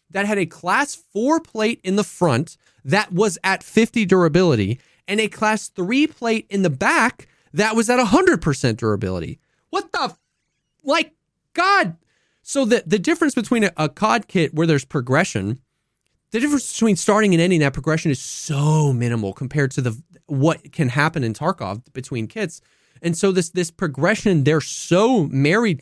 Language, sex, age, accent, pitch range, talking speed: English, male, 30-49, American, 145-205 Hz, 170 wpm